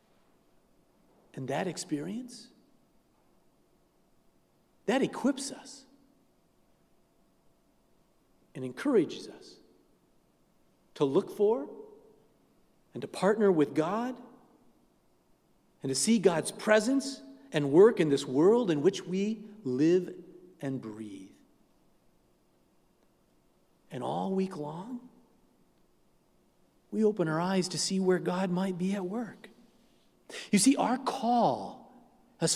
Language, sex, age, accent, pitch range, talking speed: English, male, 50-69, American, 180-255 Hz, 100 wpm